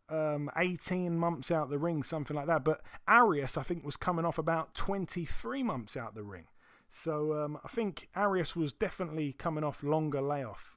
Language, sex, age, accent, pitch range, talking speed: English, male, 20-39, British, 135-170 Hz, 195 wpm